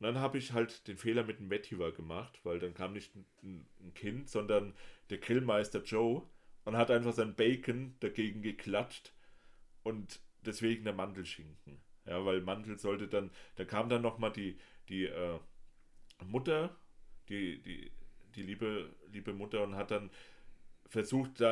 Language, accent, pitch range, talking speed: German, German, 85-115 Hz, 160 wpm